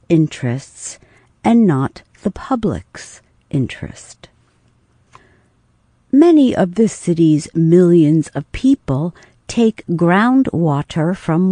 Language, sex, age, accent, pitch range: Chinese, female, 60-79, American, 145-200 Hz